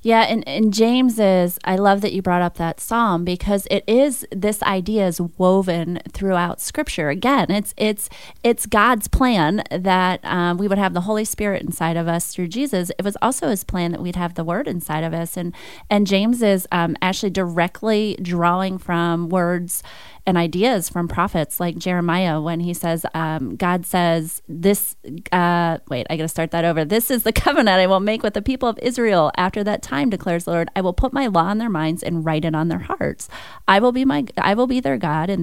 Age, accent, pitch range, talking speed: 30-49, American, 170-215 Hz, 215 wpm